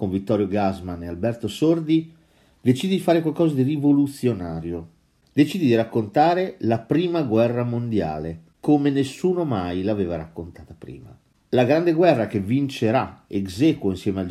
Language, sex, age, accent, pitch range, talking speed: Italian, male, 50-69, native, 100-145 Hz, 140 wpm